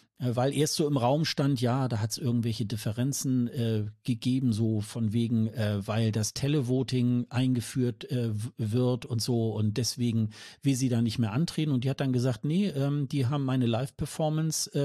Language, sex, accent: German, male, German